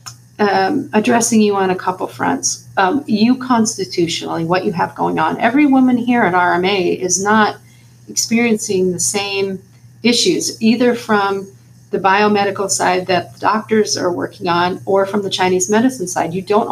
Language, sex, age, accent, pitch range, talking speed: English, female, 40-59, American, 175-215 Hz, 160 wpm